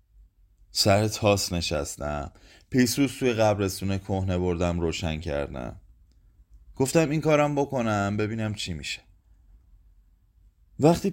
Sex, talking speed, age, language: male, 95 wpm, 30-49, Persian